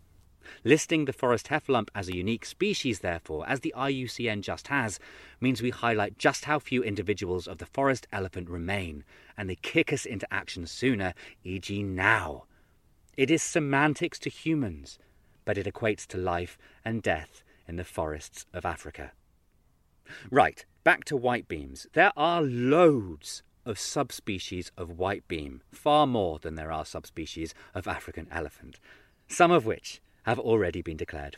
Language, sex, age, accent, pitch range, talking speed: English, male, 30-49, British, 90-135 Hz, 155 wpm